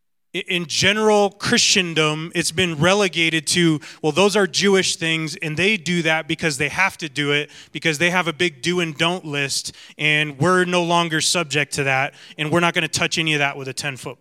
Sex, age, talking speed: male, 30-49, 210 wpm